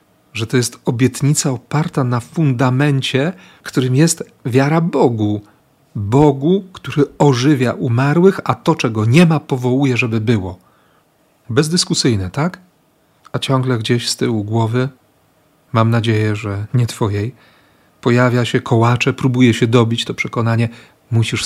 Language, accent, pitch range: Polish, native, 115-145 Hz